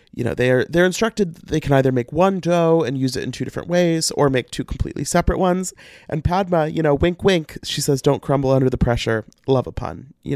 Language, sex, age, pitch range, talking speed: English, male, 30-49, 130-170 Hz, 245 wpm